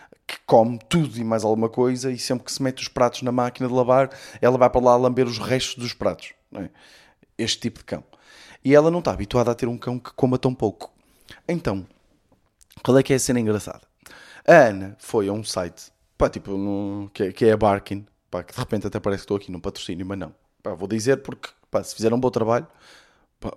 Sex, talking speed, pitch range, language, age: male, 230 wpm, 100-130 Hz, Portuguese, 20-39